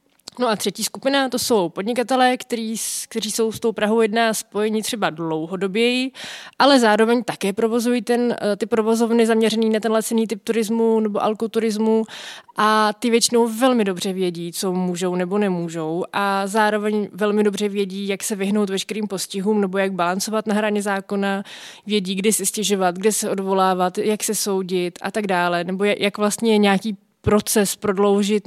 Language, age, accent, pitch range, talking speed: Czech, 20-39, native, 195-220 Hz, 165 wpm